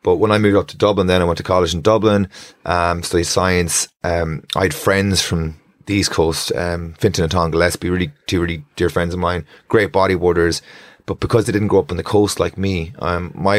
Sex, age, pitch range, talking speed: male, 30-49, 85-95 Hz, 230 wpm